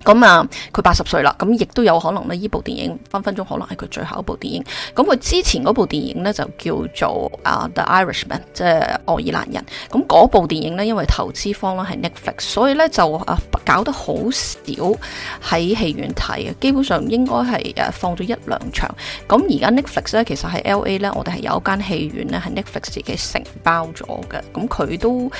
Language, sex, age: Chinese, female, 20-39